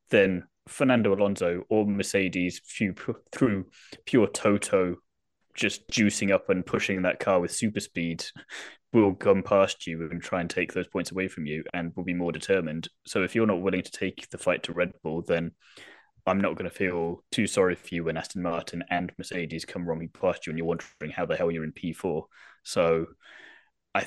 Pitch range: 85-100 Hz